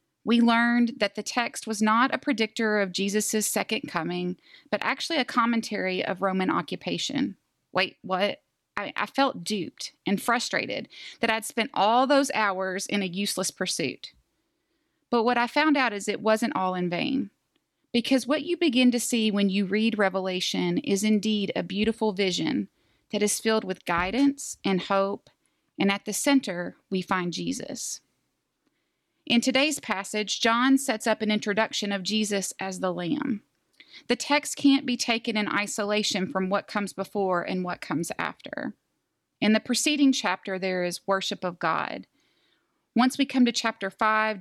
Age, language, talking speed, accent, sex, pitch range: 30-49, English, 165 wpm, American, female, 190-245 Hz